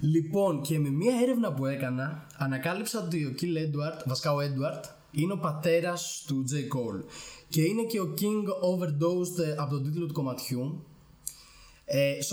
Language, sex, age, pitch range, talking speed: Greek, male, 20-39, 130-175 Hz, 150 wpm